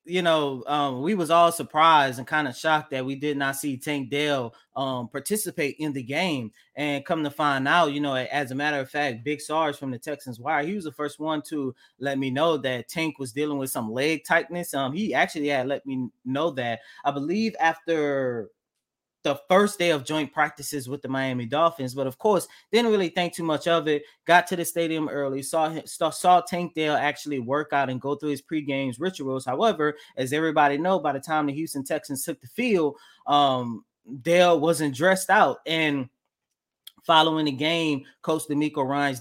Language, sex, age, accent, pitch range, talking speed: English, male, 20-39, American, 135-165 Hz, 205 wpm